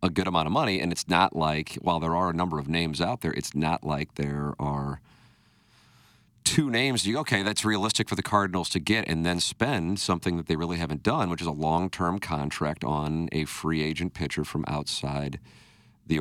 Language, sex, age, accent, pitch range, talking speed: English, male, 40-59, American, 75-95 Hz, 205 wpm